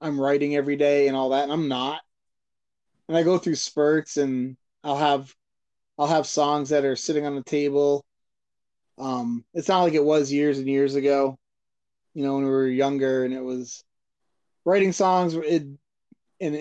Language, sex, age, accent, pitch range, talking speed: English, male, 20-39, American, 135-155 Hz, 180 wpm